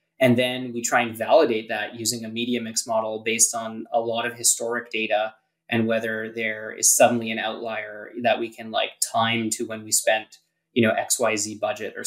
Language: English